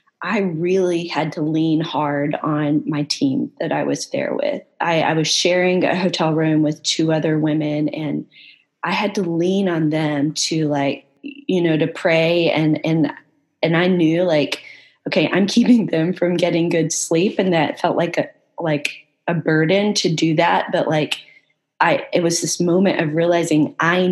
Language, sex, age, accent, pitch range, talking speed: English, female, 20-39, American, 150-175 Hz, 180 wpm